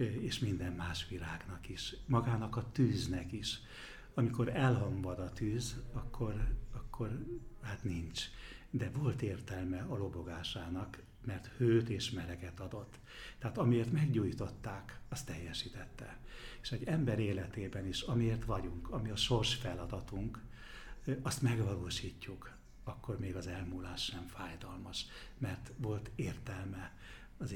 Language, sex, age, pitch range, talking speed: Hungarian, male, 60-79, 95-120 Hz, 120 wpm